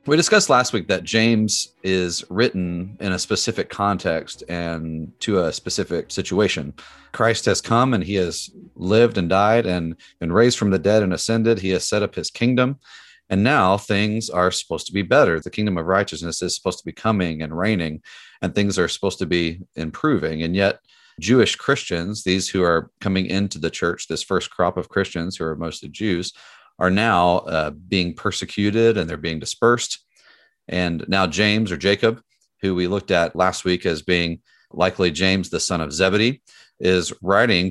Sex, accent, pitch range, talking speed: male, American, 85-105 Hz, 185 wpm